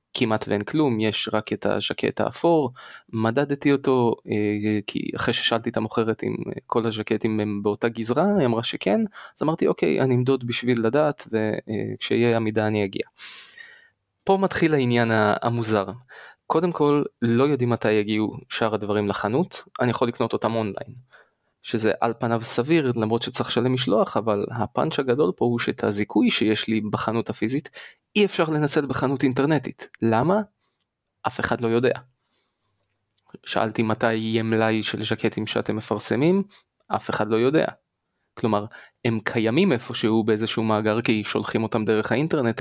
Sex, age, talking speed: male, 20-39, 150 wpm